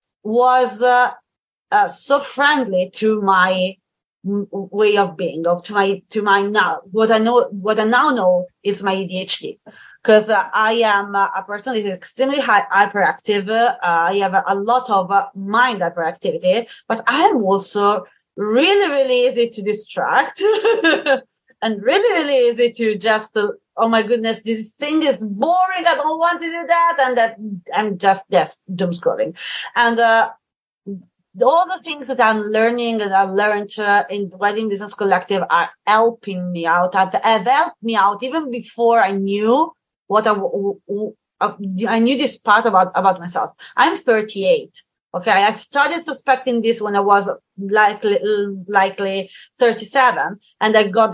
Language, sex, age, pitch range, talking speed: English, female, 30-49, 200-250 Hz, 160 wpm